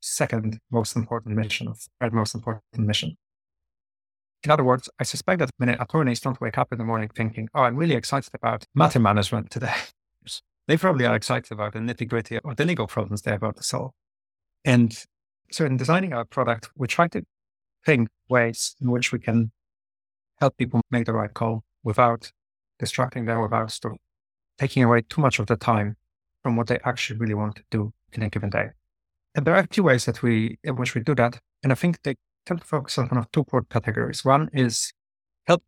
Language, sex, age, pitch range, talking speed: English, male, 30-49, 110-135 Hz, 205 wpm